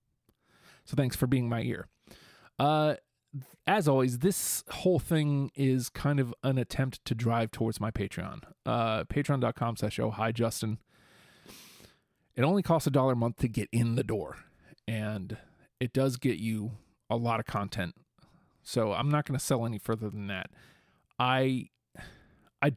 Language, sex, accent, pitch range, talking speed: English, male, American, 115-140 Hz, 160 wpm